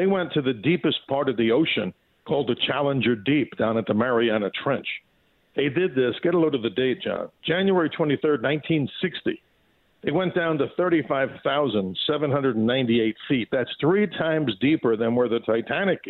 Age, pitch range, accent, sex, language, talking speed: 50-69, 120-155 Hz, American, male, English, 170 wpm